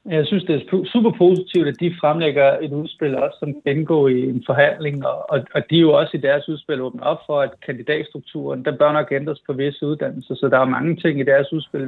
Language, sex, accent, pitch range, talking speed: Danish, male, native, 145-180 Hz, 225 wpm